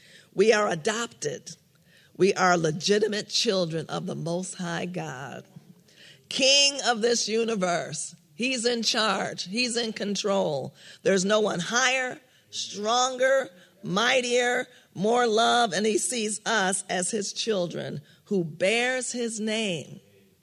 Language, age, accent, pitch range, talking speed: English, 50-69, American, 170-210 Hz, 120 wpm